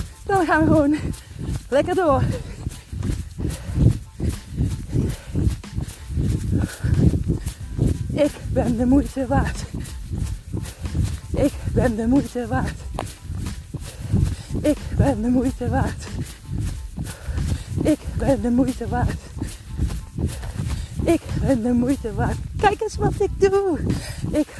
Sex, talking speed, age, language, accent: female, 95 wpm, 30-49, Dutch, Dutch